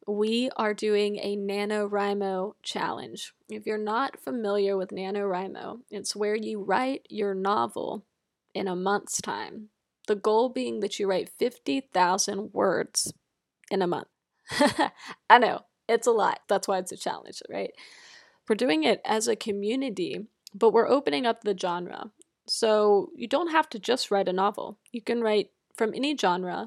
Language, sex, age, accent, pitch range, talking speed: English, female, 20-39, American, 195-225 Hz, 160 wpm